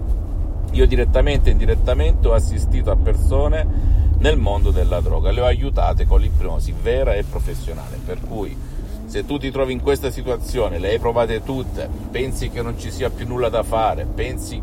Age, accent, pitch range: 50-69, native, 80-105 Hz